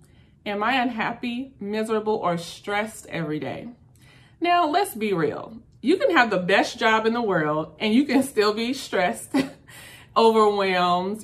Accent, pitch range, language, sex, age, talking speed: American, 180-235 Hz, English, female, 30-49, 150 wpm